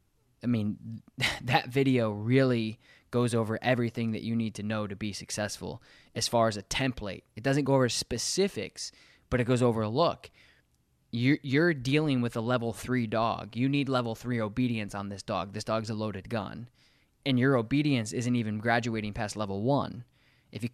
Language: English